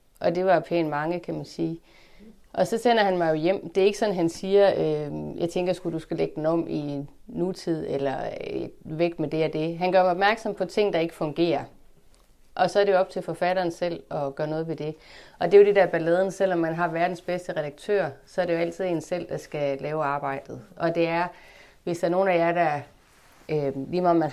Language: Danish